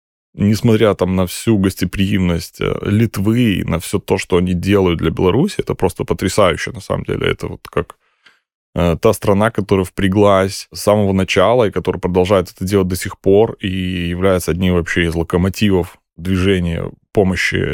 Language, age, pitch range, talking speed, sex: Russian, 20-39, 90-110 Hz, 160 wpm, male